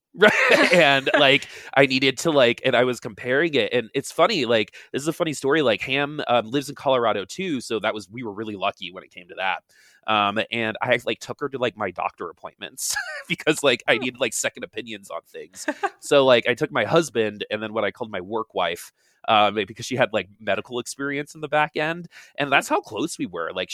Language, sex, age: English, male, 20-39